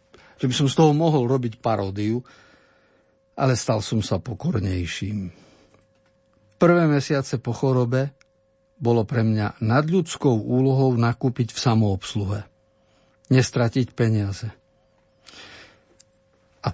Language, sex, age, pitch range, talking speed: Slovak, male, 50-69, 105-135 Hz, 100 wpm